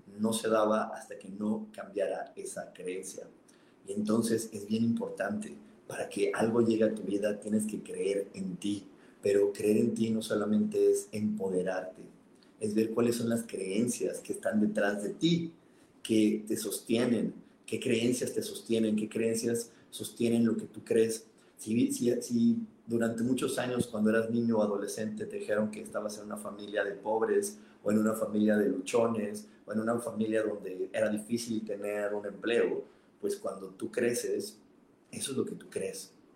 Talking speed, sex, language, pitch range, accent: 175 wpm, male, Spanish, 105-120 Hz, Mexican